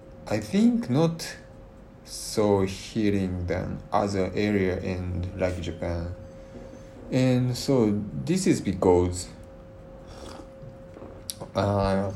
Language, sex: English, male